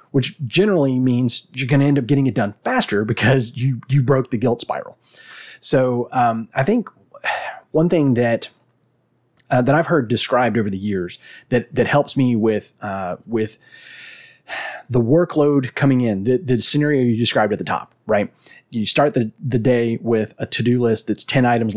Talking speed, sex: 185 wpm, male